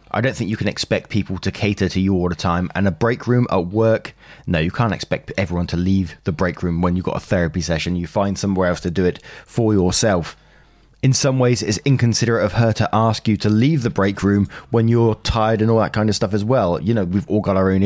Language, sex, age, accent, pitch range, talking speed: English, male, 20-39, British, 95-125 Hz, 260 wpm